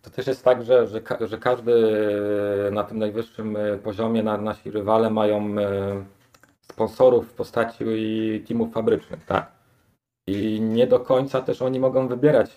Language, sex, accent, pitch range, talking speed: Polish, male, native, 100-115 Hz, 135 wpm